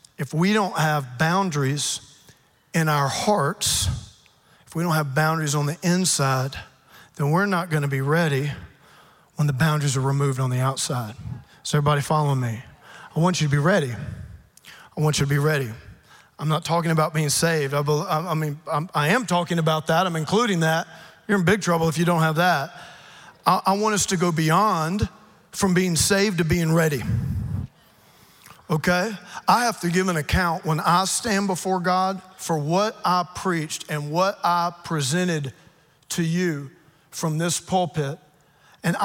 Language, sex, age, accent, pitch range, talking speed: English, male, 40-59, American, 150-185 Hz, 170 wpm